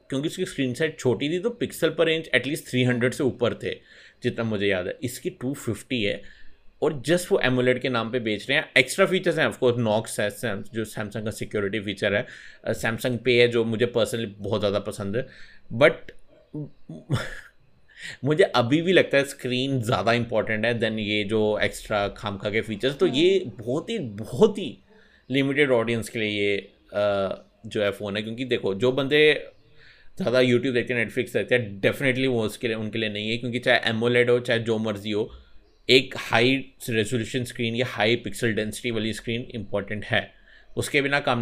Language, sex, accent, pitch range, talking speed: Hindi, male, native, 105-130 Hz, 190 wpm